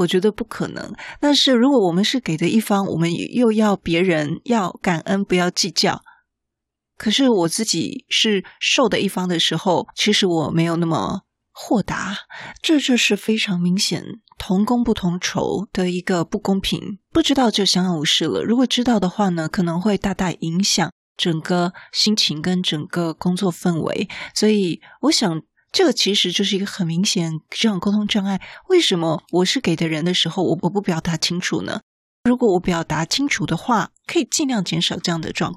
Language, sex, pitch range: Chinese, female, 175-220 Hz